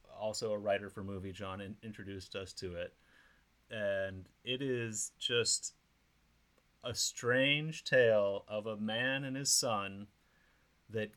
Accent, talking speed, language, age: American, 135 wpm, English, 30-49